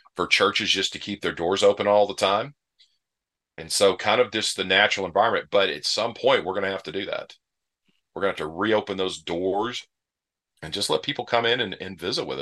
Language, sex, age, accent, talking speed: English, male, 40-59, American, 230 wpm